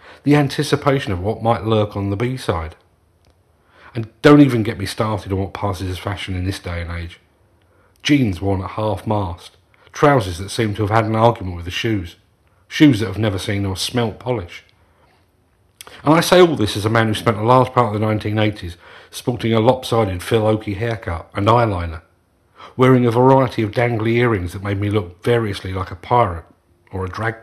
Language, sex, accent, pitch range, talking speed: English, male, British, 90-120 Hz, 195 wpm